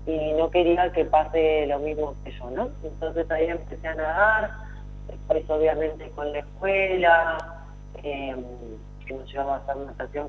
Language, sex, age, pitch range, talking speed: Spanish, female, 30-49, 140-175 Hz, 165 wpm